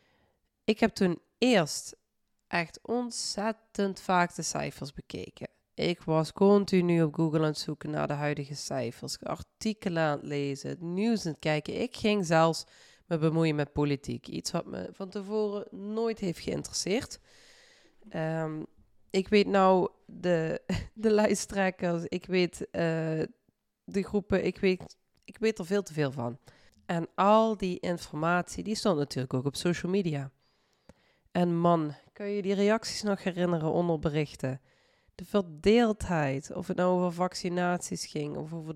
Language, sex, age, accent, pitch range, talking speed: Dutch, female, 20-39, Dutch, 150-200 Hz, 150 wpm